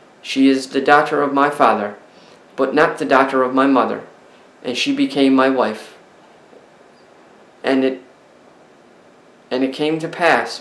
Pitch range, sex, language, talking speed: 130-155 Hz, male, English, 145 wpm